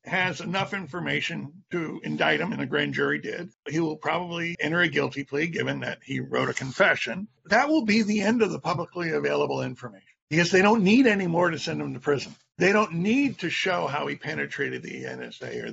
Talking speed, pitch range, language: 215 wpm, 150-210 Hz, English